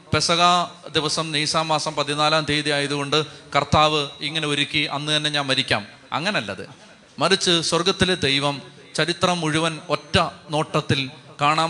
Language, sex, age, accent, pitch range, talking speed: Malayalam, male, 30-49, native, 140-165 Hz, 115 wpm